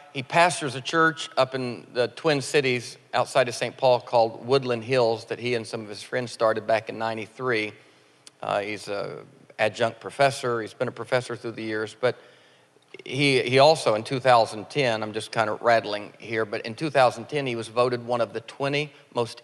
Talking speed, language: 190 wpm, English